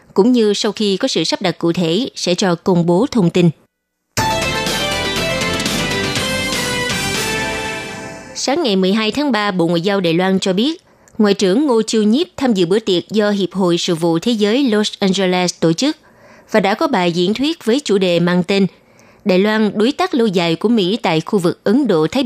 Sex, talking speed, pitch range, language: female, 195 wpm, 175-230 Hz, Vietnamese